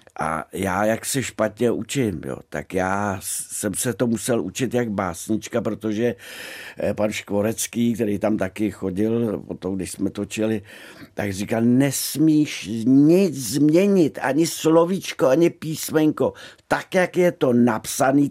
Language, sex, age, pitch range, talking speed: Czech, male, 60-79, 110-135 Hz, 135 wpm